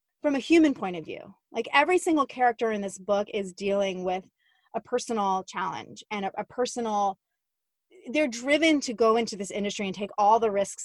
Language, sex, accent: English, female, American